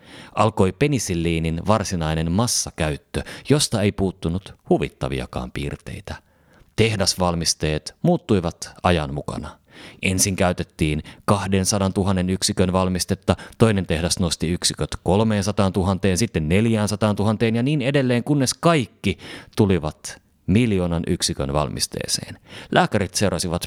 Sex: male